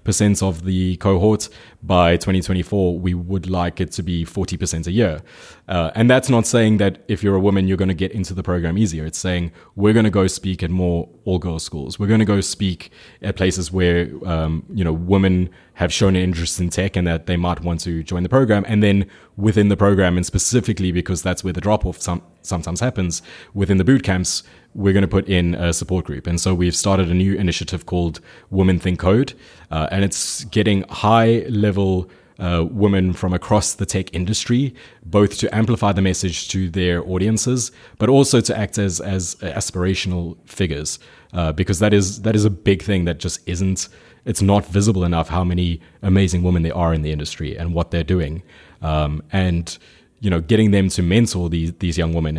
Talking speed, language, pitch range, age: 205 wpm, English, 85-100 Hz, 20-39